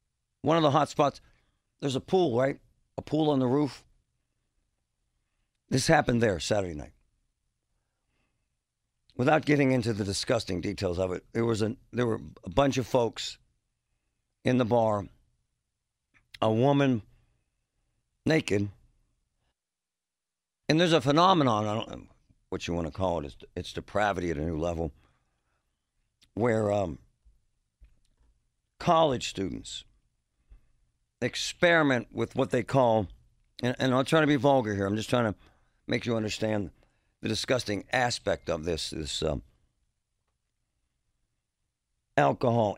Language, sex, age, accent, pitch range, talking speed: English, male, 60-79, American, 90-130 Hz, 130 wpm